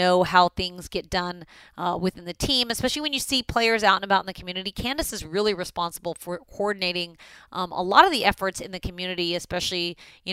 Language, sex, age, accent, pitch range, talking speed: English, female, 30-49, American, 175-220 Hz, 215 wpm